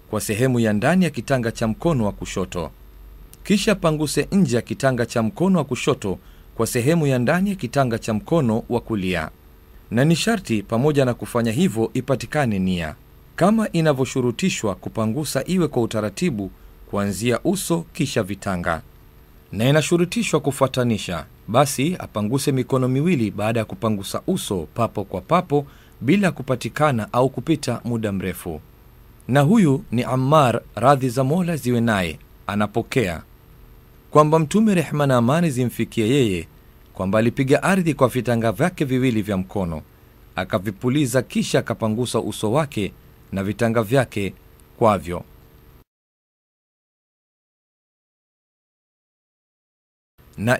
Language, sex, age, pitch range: Swahili, male, 40-59, 105-150 Hz